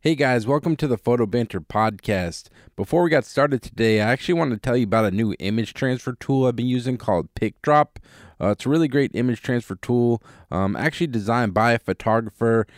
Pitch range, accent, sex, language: 100-120 Hz, American, male, English